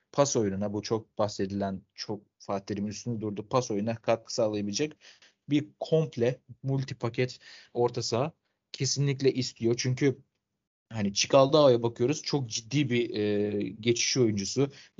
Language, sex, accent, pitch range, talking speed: Turkish, male, native, 110-130 Hz, 130 wpm